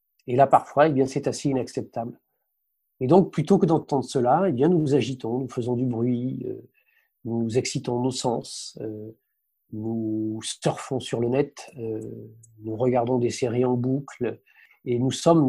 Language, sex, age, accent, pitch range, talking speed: French, male, 40-59, French, 120-150 Hz, 165 wpm